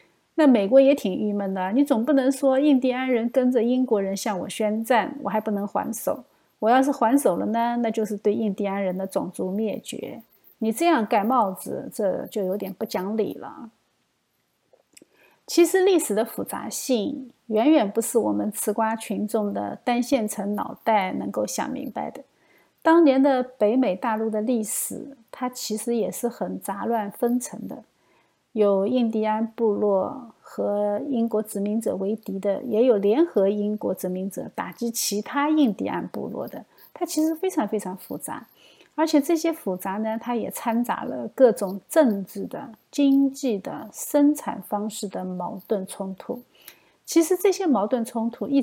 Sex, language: female, Chinese